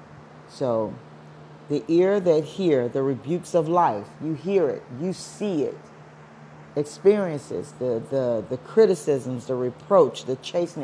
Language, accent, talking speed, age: English, American, 135 wpm, 50-69